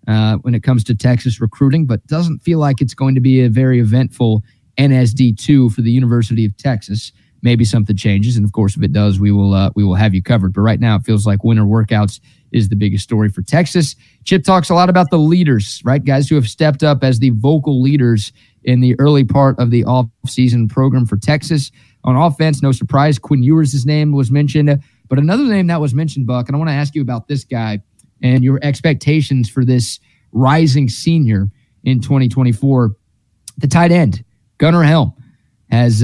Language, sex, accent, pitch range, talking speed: English, male, American, 115-140 Hz, 205 wpm